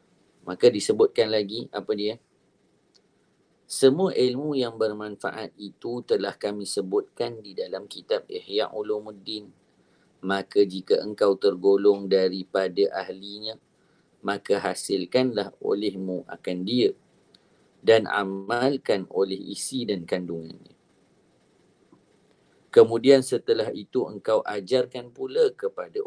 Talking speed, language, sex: 95 wpm, English, male